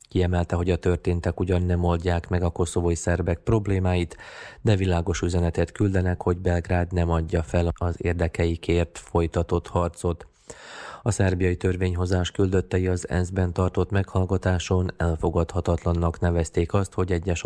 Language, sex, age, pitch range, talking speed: Hungarian, male, 30-49, 85-90 Hz, 130 wpm